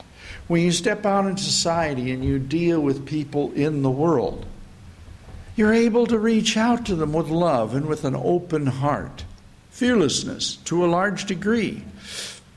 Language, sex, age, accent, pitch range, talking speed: English, male, 60-79, American, 130-195 Hz, 160 wpm